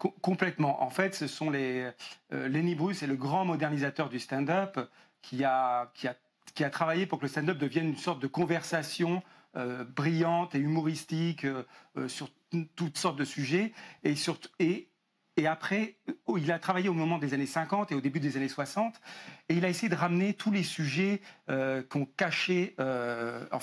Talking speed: 190 wpm